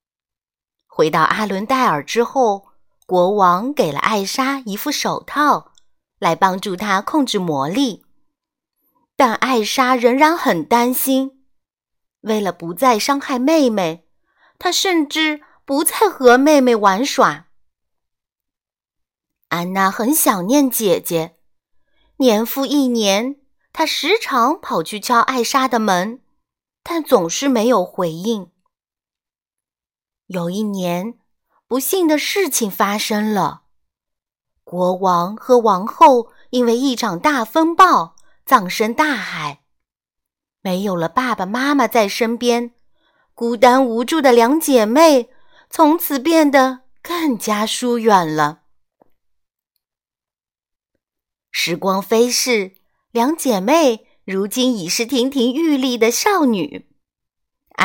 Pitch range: 205-275 Hz